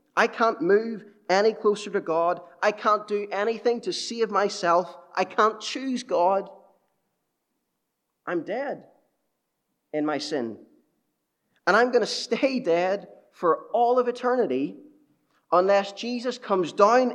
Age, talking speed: 20-39, 130 wpm